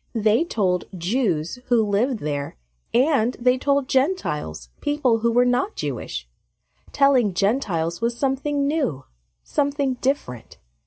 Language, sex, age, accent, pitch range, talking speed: English, female, 30-49, American, 170-255 Hz, 120 wpm